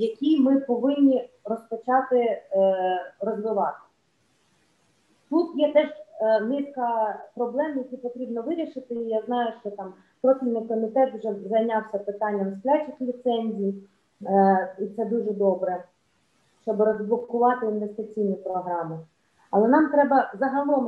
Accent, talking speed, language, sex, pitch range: native, 105 wpm, Ukrainian, female, 215-265 Hz